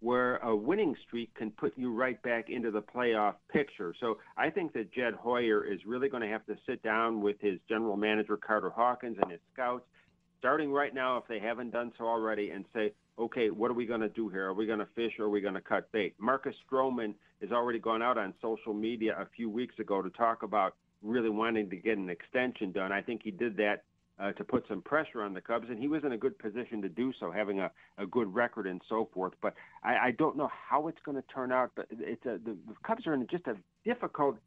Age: 50-69